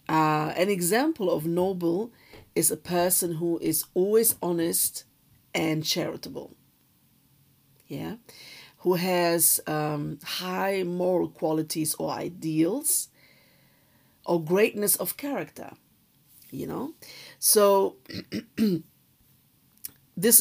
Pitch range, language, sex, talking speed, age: 155-180 Hz, English, female, 90 wpm, 50-69